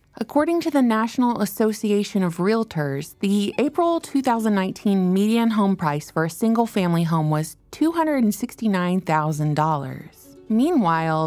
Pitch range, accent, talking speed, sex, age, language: 160-225 Hz, American, 105 wpm, female, 30-49, English